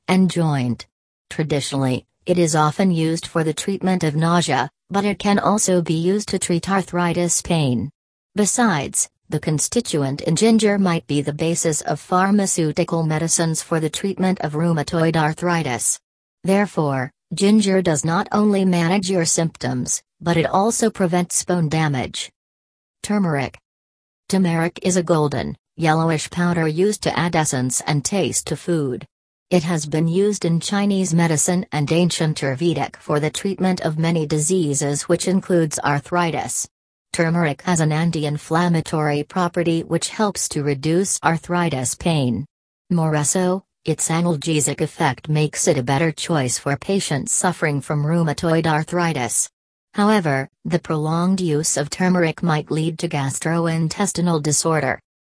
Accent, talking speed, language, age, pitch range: American, 135 wpm, English, 40-59, 150-180 Hz